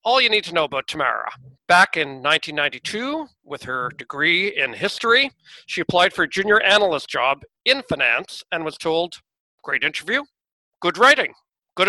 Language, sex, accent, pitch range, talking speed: English, male, American, 150-195 Hz, 160 wpm